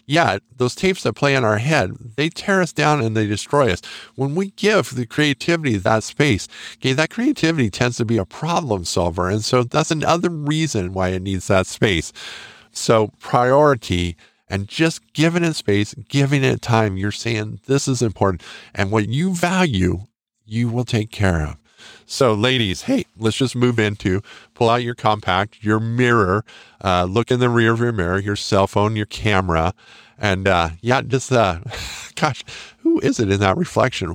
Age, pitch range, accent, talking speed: 50-69, 95-130 Hz, American, 180 wpm